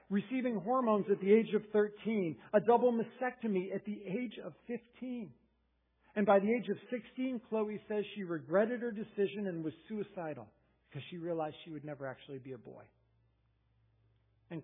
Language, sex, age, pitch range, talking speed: English, male, 50-69, 150-220 Hz, 170 wpm